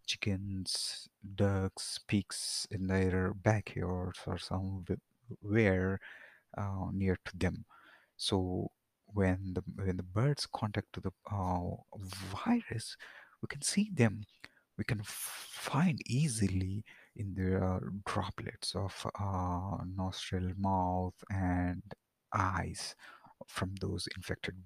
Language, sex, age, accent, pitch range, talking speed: English, male, 30-49, Indian, 95-110 Hz, 110 wpm